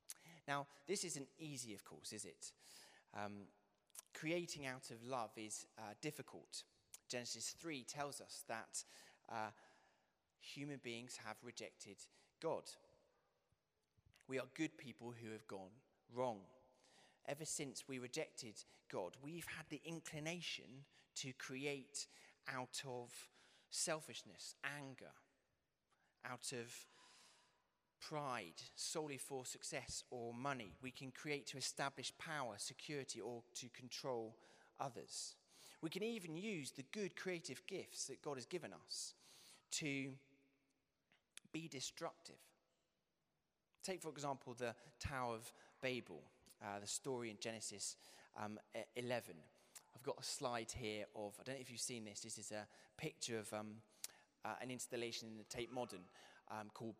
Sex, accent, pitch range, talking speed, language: male, British, 115-145 Hz, 135 wpm, English